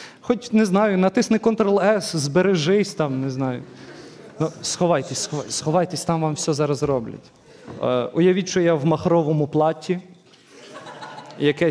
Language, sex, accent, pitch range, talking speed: Ukrainian, male, native, 155-215 Hz, 130 wpm